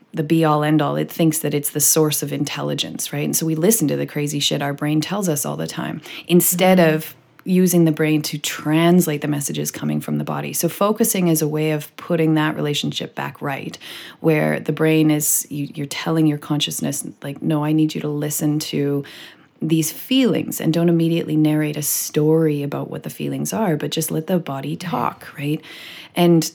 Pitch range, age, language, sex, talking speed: 150-180 Hz, 30-49, English, female, 200 wpm